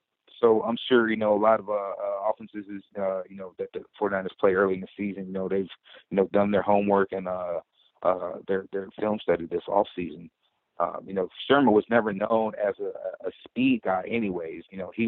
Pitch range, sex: 95-110 Hz, male